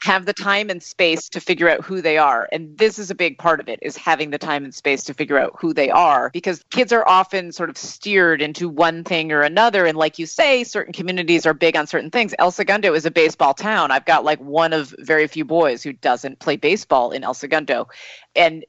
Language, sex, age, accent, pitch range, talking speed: English, female, 30-49, American, 155-200 Hz, 245 wpm